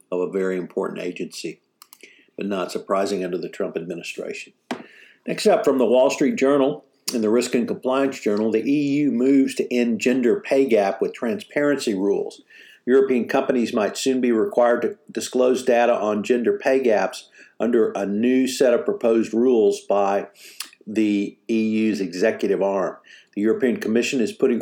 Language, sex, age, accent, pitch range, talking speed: English, male, 50-69, American, 105-130 Hz, 160 wpm